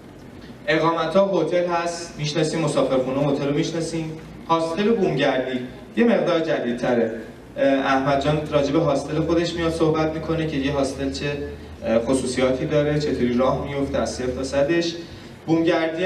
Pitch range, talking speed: 120-170 Hz, 140 wpm